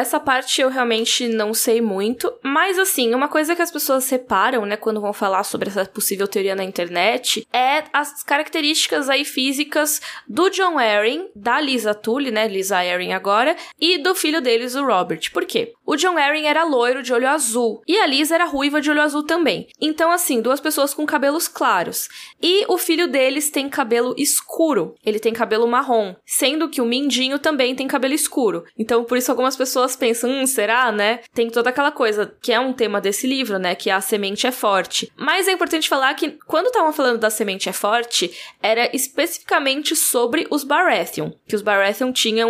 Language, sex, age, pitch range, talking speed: Portuguese, female, 10-29, 220-295 Hz, 195 wpm